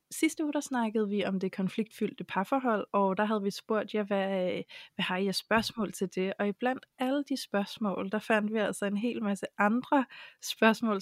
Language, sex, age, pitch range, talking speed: Danish, female, 30-49, 200-245 Hz, 200 wpm